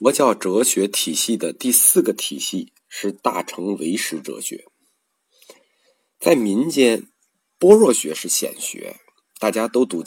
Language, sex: Chinese, male